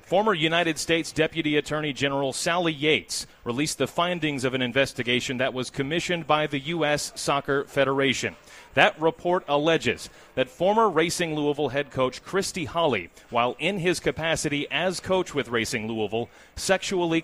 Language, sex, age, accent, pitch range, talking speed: English, male, 30-49, American, 130-170 Hz, 150 wpm